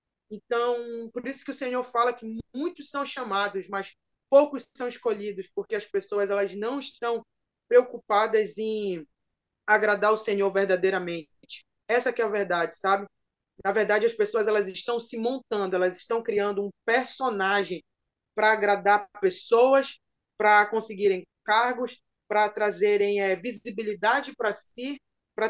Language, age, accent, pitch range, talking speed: Portuguese, 20-39, Brazilian, 200-250 Hz, 140 wpm